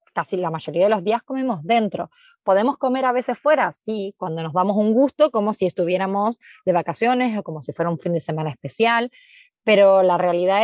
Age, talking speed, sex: 20-39, 205 wpm, female